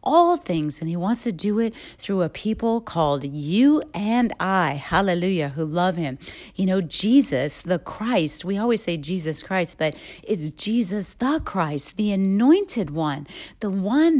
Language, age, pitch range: English, 40-59, 180-255 Hz